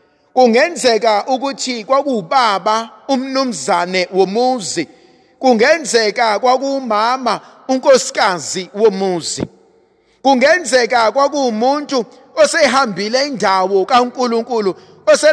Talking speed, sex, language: 90 wpm, male, English